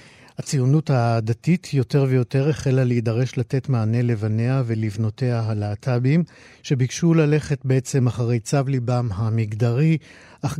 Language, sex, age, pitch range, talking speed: Hebrew, male, 50-69, 115-140 Hz, 110 wpm